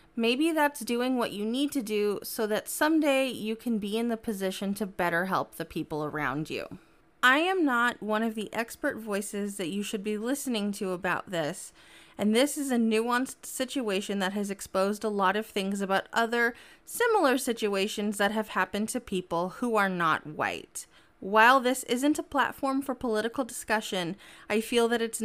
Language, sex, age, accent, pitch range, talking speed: English, female, 20-39, American, 200-240 Hz, 185 wpm